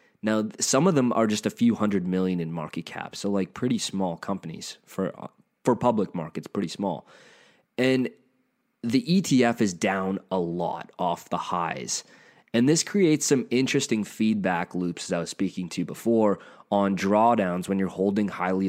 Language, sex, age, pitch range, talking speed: English, male, 20-39, 95-135 Hz, 170 wpm